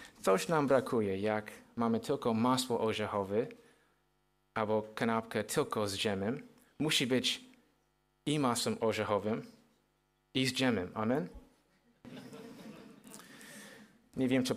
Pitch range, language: 110-150 Hz, Polish